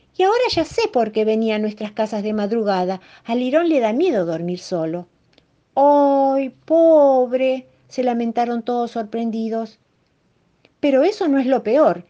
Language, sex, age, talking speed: Spanish, female, 50-69, 155 wpm